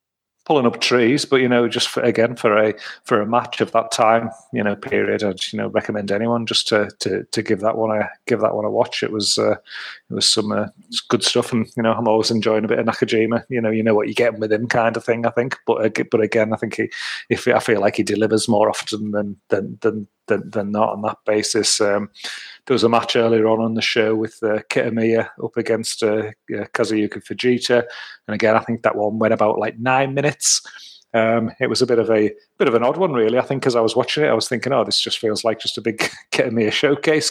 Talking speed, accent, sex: 255 wpm, British, male